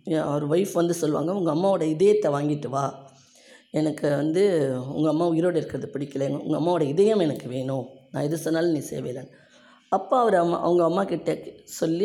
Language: Tamil